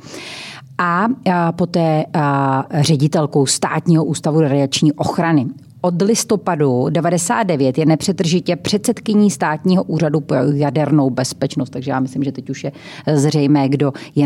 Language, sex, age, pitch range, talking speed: Czech, female, 30-49, 135-165 Hz, 120 wpm